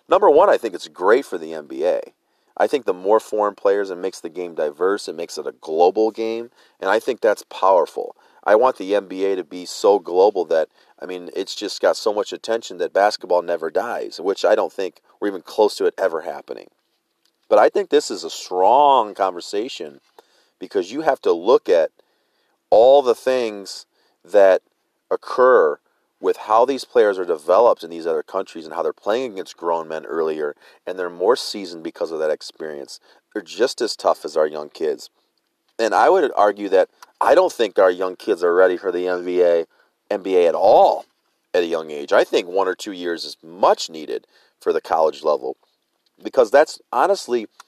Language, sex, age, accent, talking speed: English, male, 40-59, American, 195 wpm